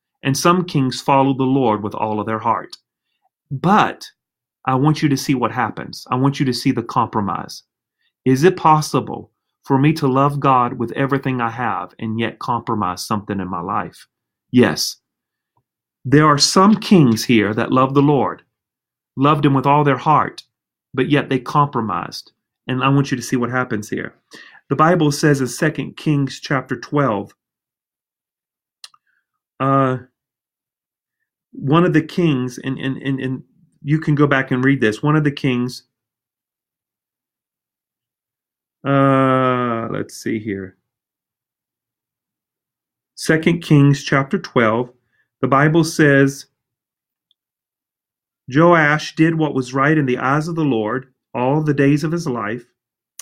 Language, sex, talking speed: English, male, 145 wpm